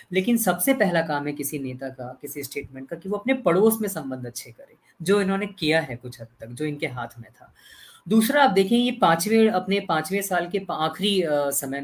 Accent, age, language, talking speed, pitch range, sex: native, 20-39, Hindi, 215 wpm, 150-205 Hz, female